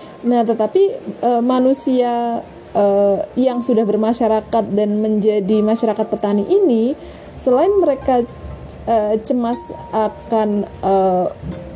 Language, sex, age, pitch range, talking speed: Indonesian, female, 20-39, 215-275 Hz, 95 wpm